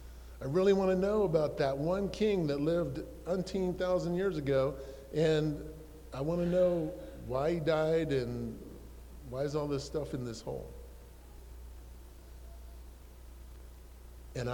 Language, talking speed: English, 130 wpm